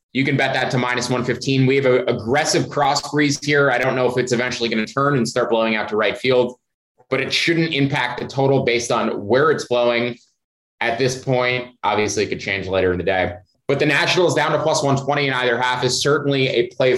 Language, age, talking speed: English, 20-39, 230 wpm